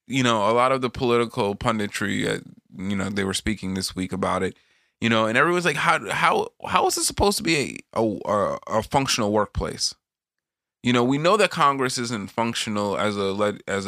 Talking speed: 205 wpm